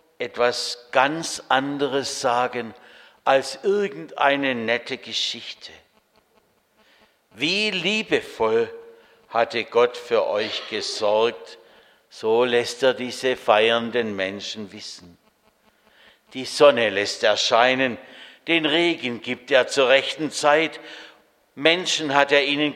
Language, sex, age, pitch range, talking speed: German, male, 60-79, 115-155 Hz, 100 wpm